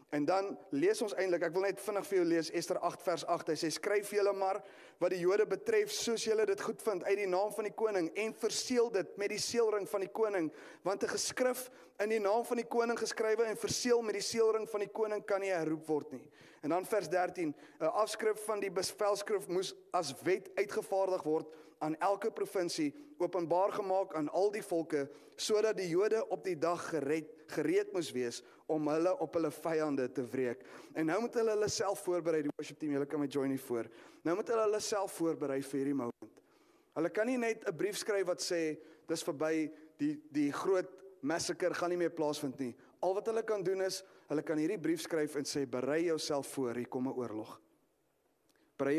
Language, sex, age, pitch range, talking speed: English, male, 30-49, 155-210 Hz, 215 wpm